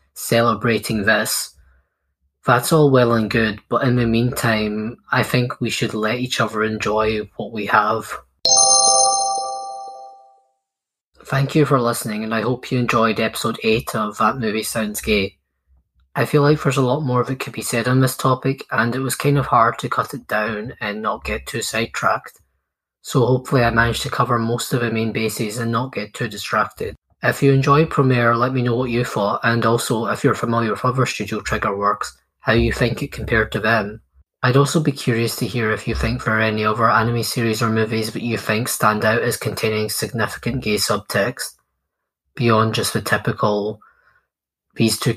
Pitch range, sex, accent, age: 110-125 Hz, male, British, 20-39